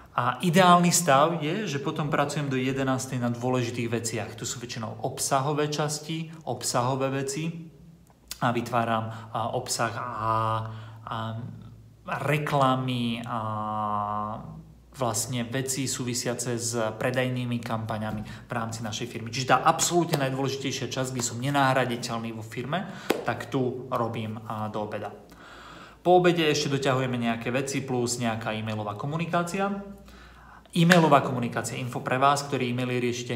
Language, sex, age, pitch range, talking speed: Slovak, male, 30-49, 115-140 Hz, 125 wpm